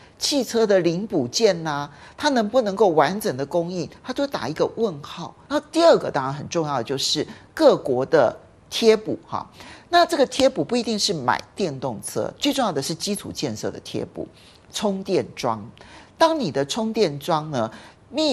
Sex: male